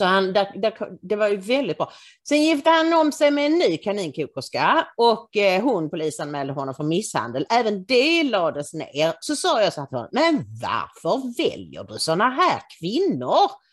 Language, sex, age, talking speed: English, female, 40-59, 175 wpm